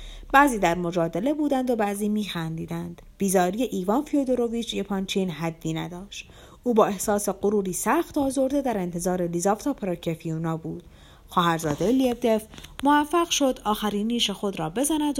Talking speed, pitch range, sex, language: 130 wpm, 170-260 Hz, female, Persian